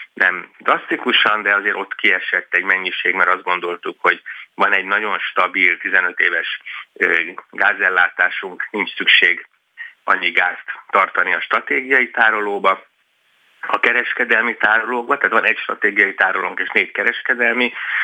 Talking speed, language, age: 125 wpm, Hungarian, 30-49